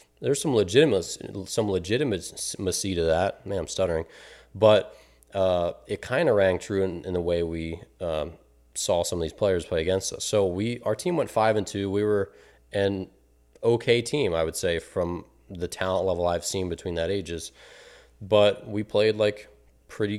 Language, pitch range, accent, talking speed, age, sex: English, 90-105 Hz, American, 180 wpm, 30-49, male